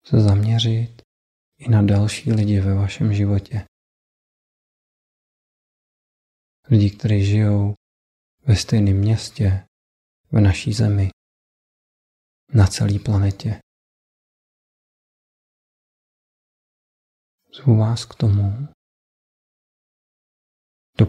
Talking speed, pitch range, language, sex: 75 wpm, 100-115 Hz, Czech, male